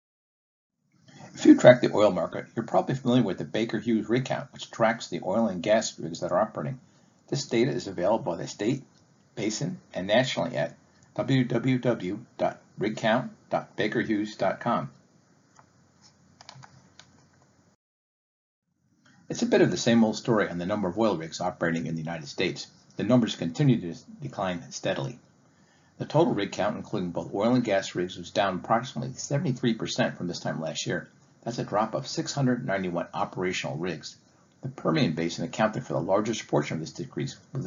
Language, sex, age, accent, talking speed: English, male, 50-69, American, 160 wpm